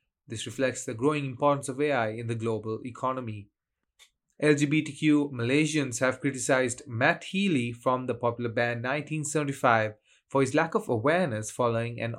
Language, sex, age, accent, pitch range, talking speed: English, male, 30-49, Indian, 115-150 Hz, 145 wpm